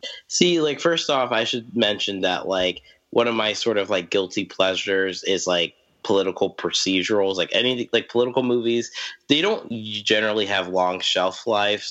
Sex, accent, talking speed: male, American, 165 wpm